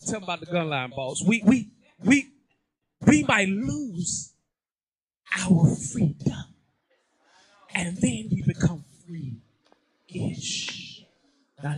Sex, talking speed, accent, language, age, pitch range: male, 95 wpm, American, English, 20-39, 175-245 Hz